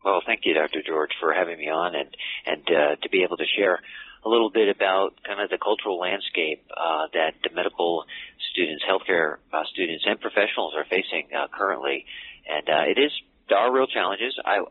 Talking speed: 200 wpm